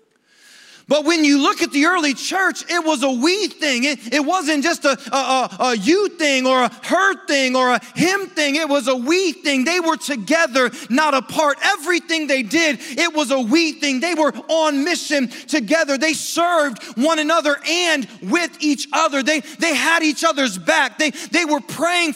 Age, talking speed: 30-49, 195 wpm